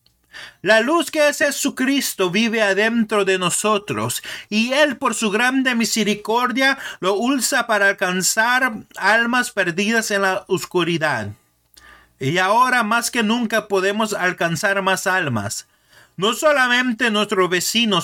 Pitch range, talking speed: 165-235 Hz, 125 wpm